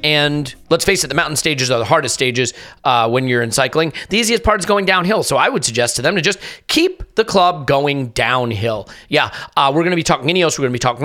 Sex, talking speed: male, 260 wpm